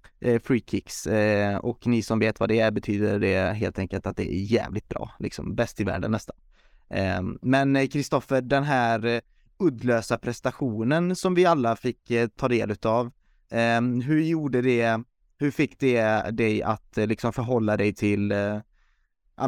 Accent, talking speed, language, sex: native, 150 wpm, Swedish, male